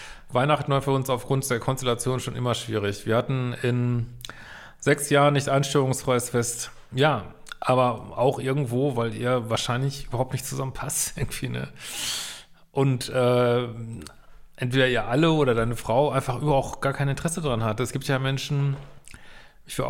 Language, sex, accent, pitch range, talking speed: German, male, German, 120-145 Hz, 155 wpm